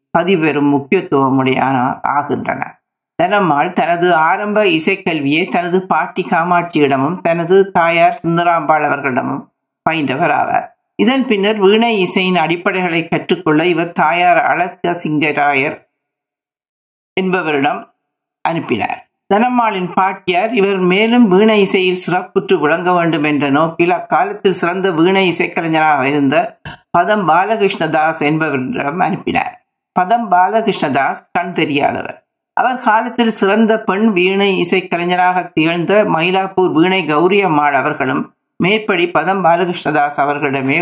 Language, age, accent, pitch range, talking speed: Tamil, 60-79, native, 155-195 Hz, 105 wpm